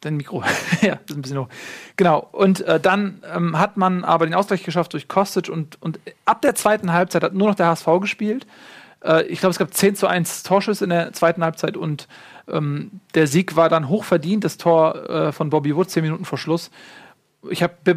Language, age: German, 40-59